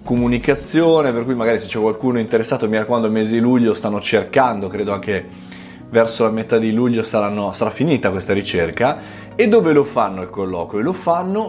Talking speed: 185 wpm